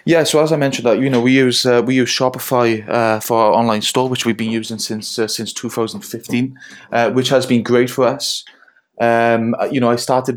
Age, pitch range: 20-39, 110-125 Hz